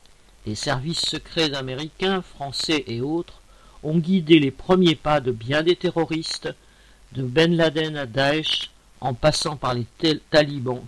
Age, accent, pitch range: 50-69, French, 130-170 Hz